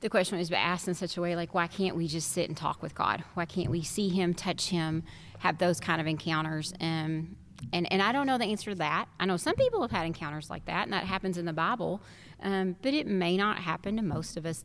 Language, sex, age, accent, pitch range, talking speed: English, female, 30-49, American, 165-185 Hz, 265 wpm